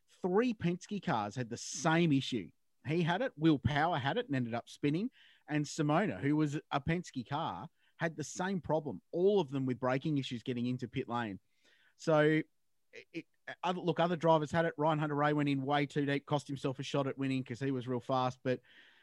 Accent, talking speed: Australian, 205 wpm